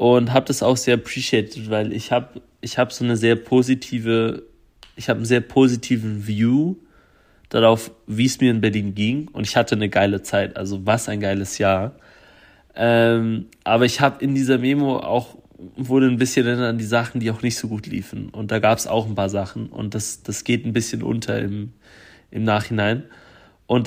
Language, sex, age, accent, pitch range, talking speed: German, male, 30-49, German, 115-130 Hz, 195 wpm